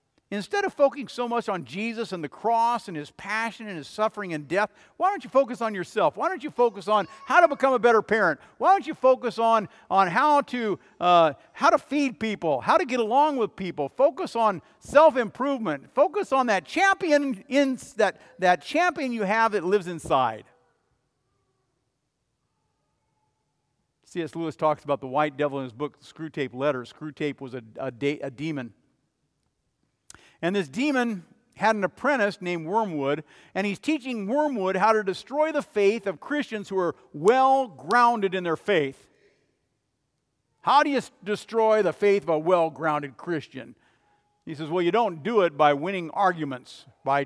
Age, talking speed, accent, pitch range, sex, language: 50-69, 175 wpm, American, 155-240 Hz, male, English